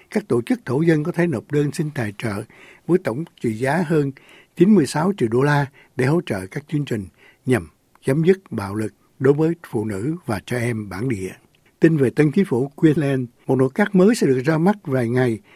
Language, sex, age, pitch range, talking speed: Vietnamese, male, 60-79, 120-165 Hz, 220 wpm